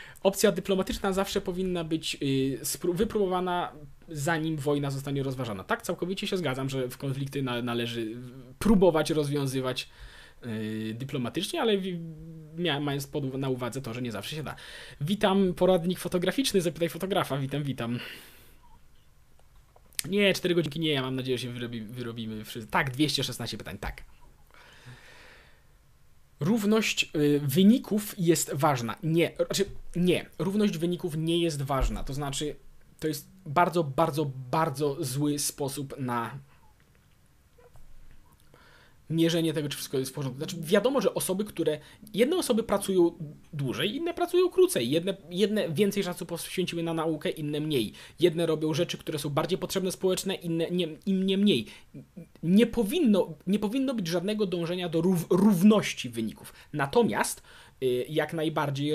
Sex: male